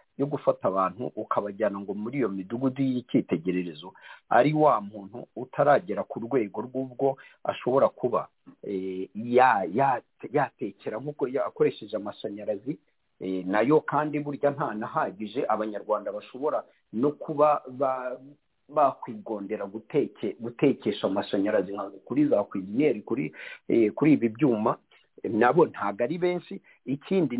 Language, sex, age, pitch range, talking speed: English, male, 50-69, 110-155 Hz, 110 wpm